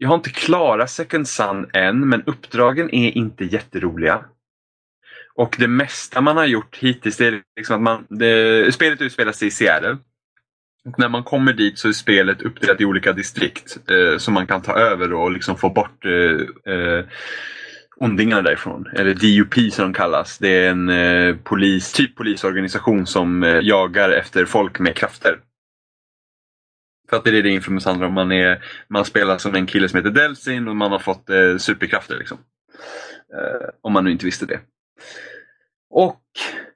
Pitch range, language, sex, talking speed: 95-145 Hz, Swedish, male, 175 wpm